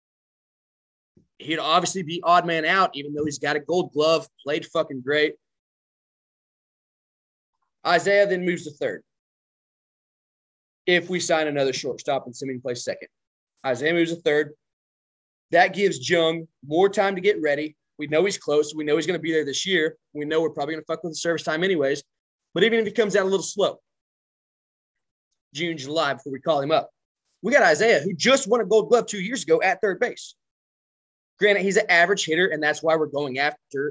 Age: 20-39